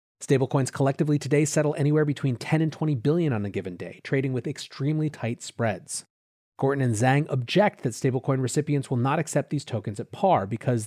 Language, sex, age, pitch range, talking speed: English, male, 30-49, 120-155 Hz, 190 wpm